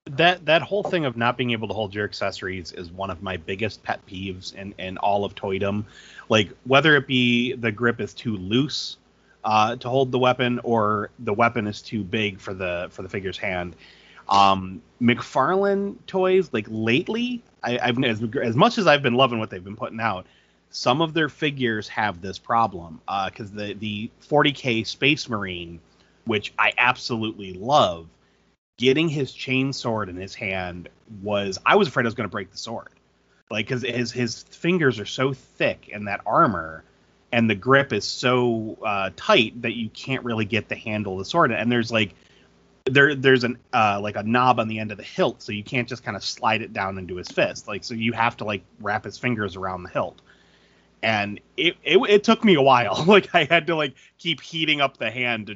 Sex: male